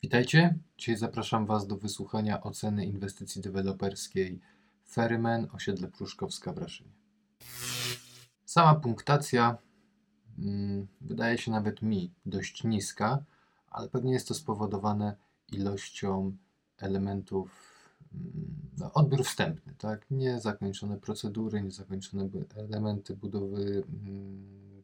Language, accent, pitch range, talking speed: Polish, native, 100-130 Hz, 100 wpm